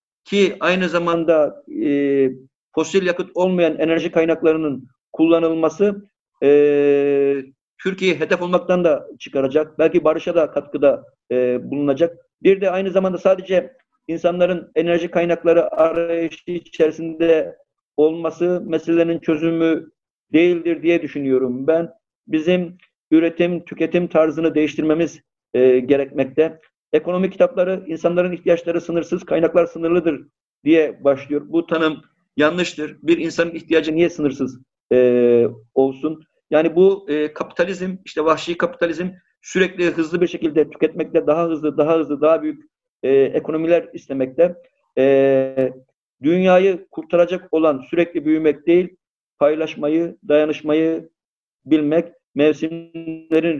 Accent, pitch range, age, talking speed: native, 150-175 Hz, 50-69, 110 wpm